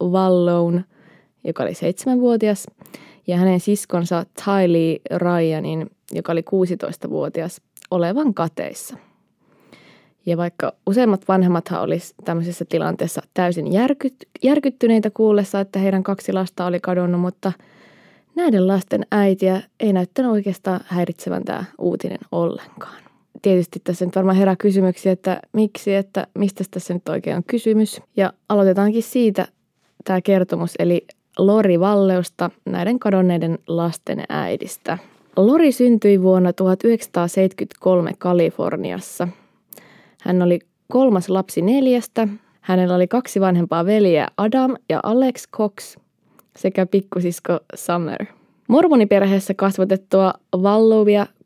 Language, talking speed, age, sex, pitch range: English, 110 wpm, 20-39, female, 180-215 Hz